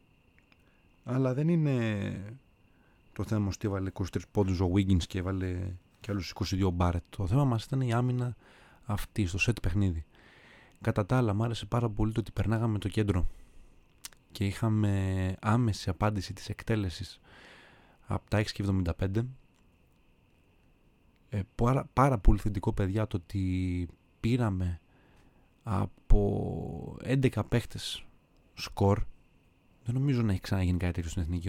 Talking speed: 130 wpm